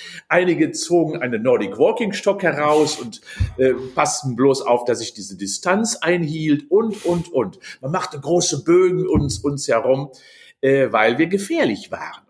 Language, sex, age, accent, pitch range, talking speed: German, male, 50-69, German, 120-165 Hz, 155 wpm